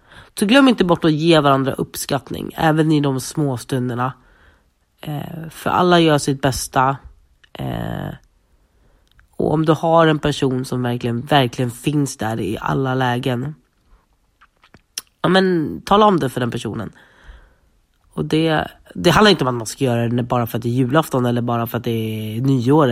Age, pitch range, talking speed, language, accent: 30-49, 120-160 Hz, 175 wpm, Swedish, native